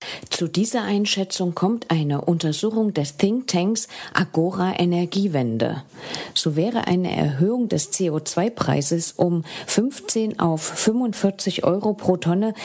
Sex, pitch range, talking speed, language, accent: female, 160-205 Hz, 110 wpm, English, German